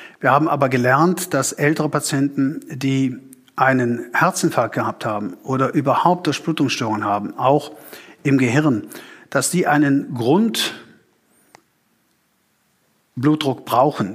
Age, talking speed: 50-69, 105 wpm